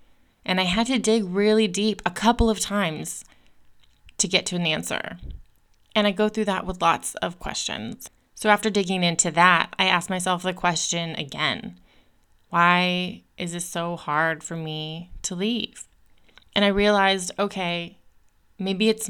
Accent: American